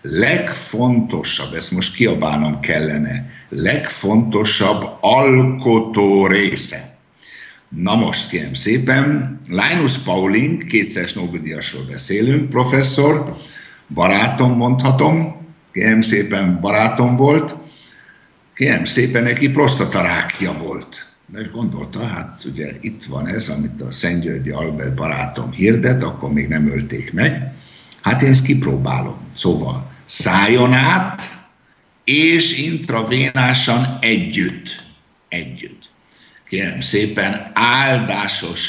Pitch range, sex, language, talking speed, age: 95-135 Hz, male, Slovak, 95 wpm, 60-79